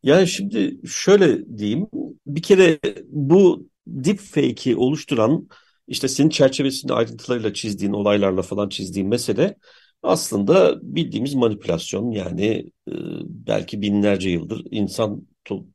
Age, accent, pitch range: 50-69, native, 110-145 Hz